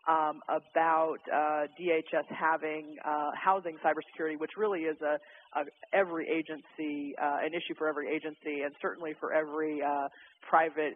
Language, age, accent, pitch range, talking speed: English, 40-59, American, 150-165 Hz, 150 wpm